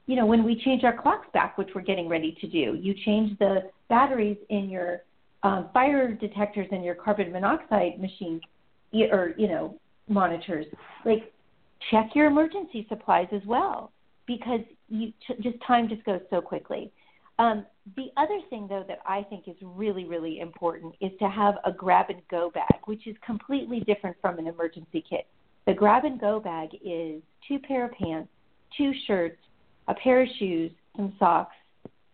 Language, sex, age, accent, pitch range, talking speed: English, female, 40-59, American, 180-230 Hz, 170 wpm